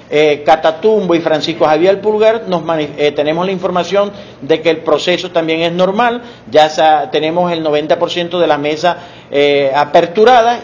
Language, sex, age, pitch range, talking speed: Spanish, male, 50-69, 165-205 Hz, 140 wpm